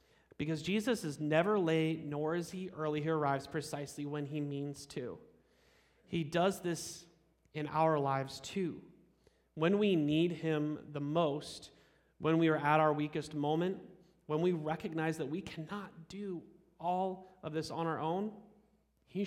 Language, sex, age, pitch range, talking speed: English, male, 30-49, 145-175 Hz, 155 wpm